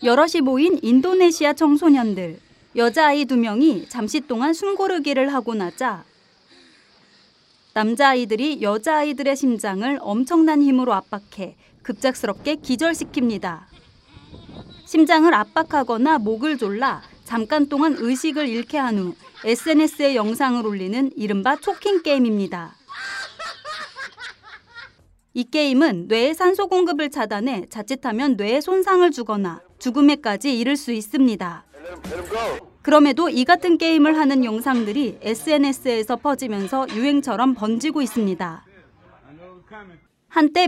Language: Korean